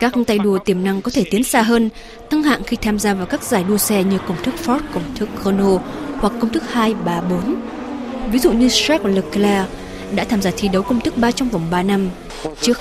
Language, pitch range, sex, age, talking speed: Vietnamese, 190-245 Hz, female, 20-39, 230 wpm